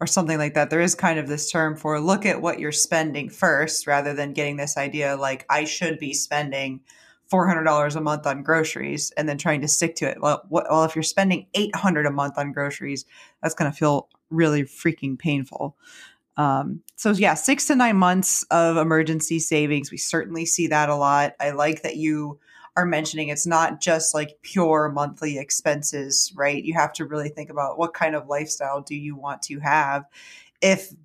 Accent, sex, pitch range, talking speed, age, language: American, female, 145-165 Hz, 205 wpm, 20-39, English